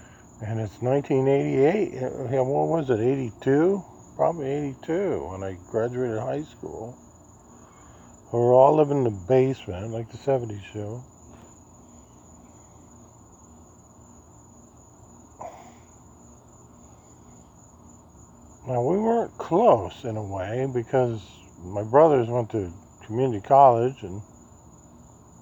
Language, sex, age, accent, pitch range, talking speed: English, male, 50-69, American, 95-130 Hz, 95 wpm